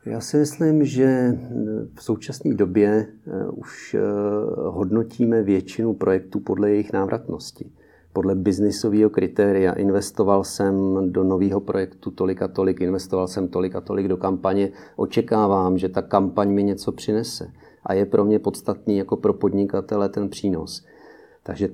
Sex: male